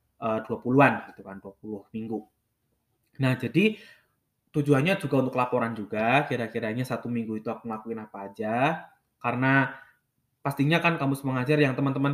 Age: 20-39